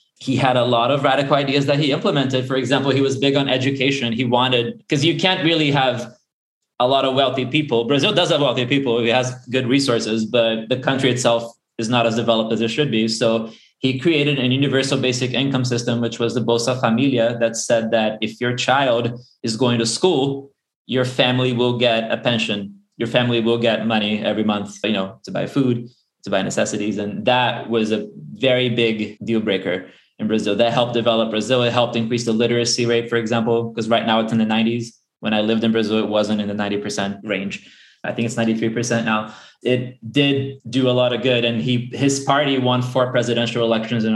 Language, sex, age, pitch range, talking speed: English, male, 20-39, 115-130 Hz, 210 wpm